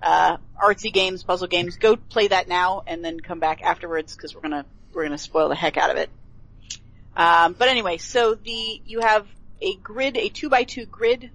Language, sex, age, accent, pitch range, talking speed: English, female, 30-49, American, 150-225 Hz, 205 wpm